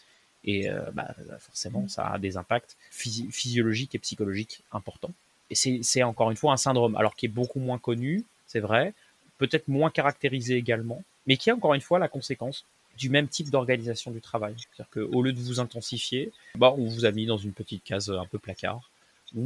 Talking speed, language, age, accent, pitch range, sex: 205 wpm, French, 30-49, French, 115-150 Hz, male